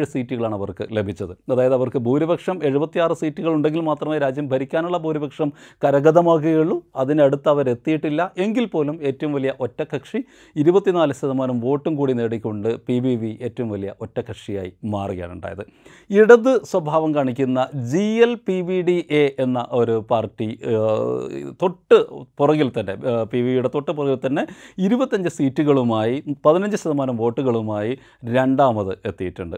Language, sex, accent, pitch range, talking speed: Malayalam, male, native, 120-165 Hz, 95 wpm